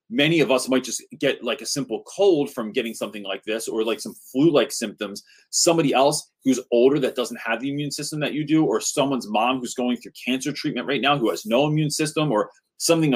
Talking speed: 230 wpm